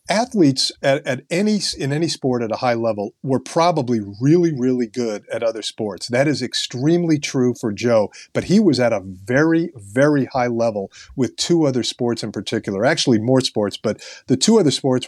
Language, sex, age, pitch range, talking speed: English, male, 50-69, 115-145 Hz, 190 wpm